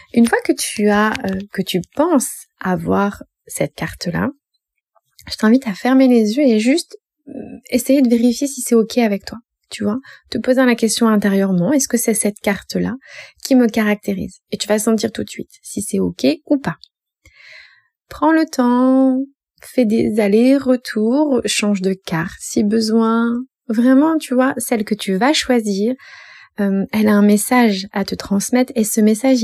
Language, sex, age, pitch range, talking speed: French, female, 20-39, 210-255 Hz, 170 wpm